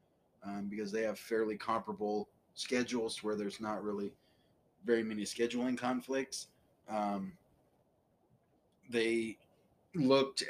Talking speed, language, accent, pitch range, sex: 105 wpm, English, American, 105-125 Hz, male